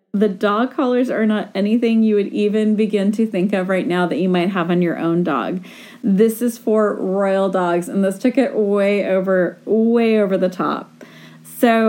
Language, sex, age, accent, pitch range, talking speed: English, female, 30-49, American, 185-230 Hz, 195 wpm